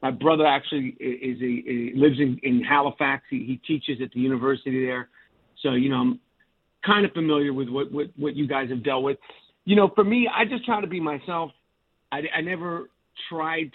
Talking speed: 205 wpm